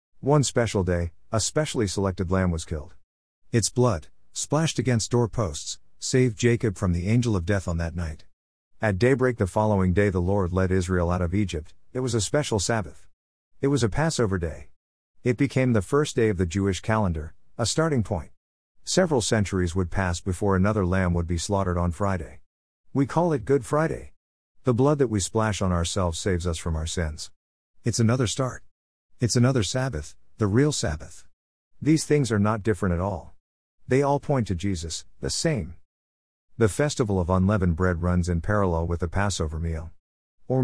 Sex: male